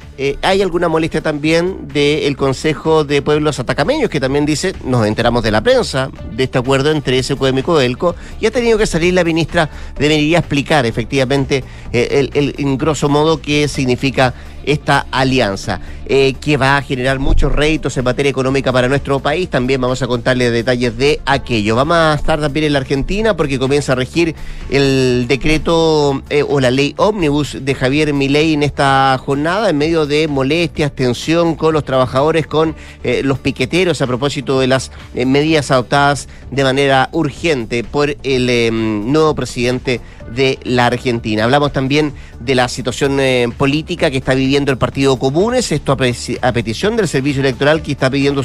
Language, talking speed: Spanish, 175 wpm